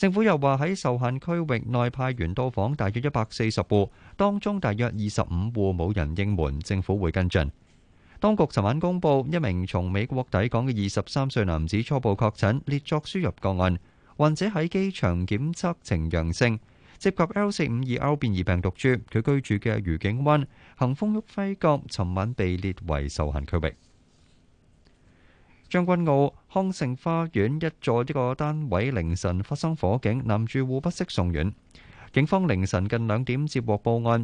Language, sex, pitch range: Chinese, male, 95-150 Hz